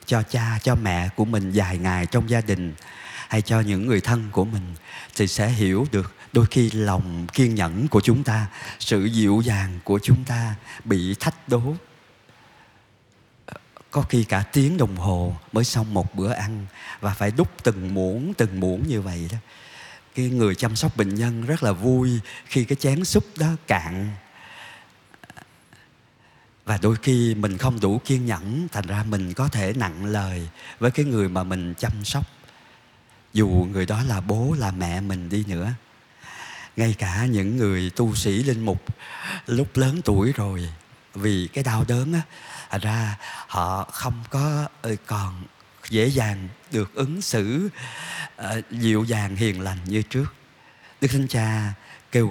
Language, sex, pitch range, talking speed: Vietnamese, male, 100-125 Hz, 165 wpm